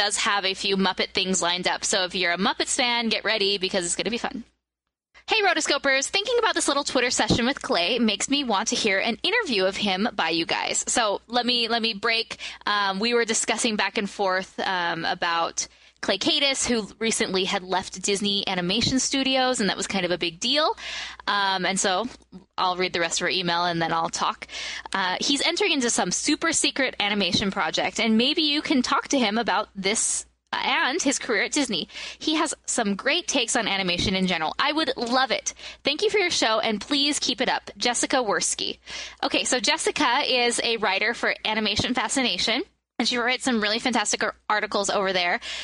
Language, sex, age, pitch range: English, female, 10-29, 200-275 Hz